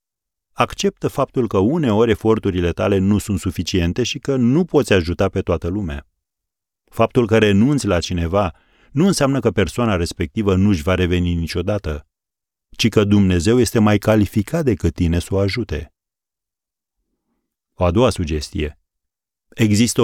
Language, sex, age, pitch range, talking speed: Romanian, male, 40-59, 90-115 Hz, 145 wpm